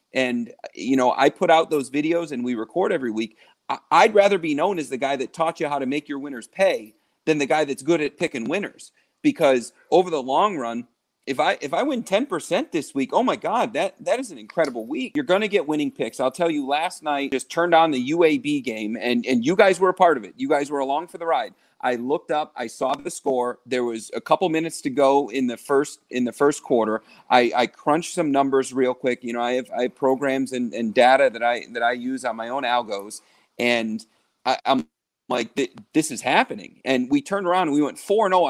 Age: 40-59